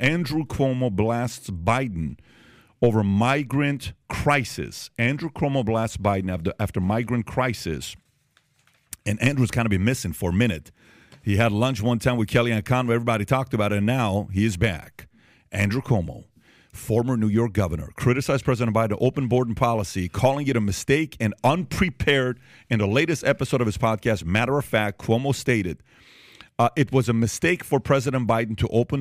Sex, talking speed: male, 170 wpm